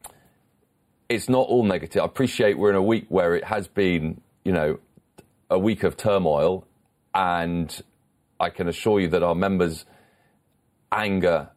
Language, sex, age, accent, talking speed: English, male, 40-59, British, 150 wpm